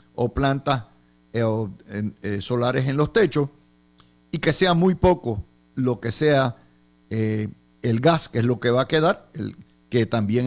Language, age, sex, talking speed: Spanish, 50-69, male, 165 wpm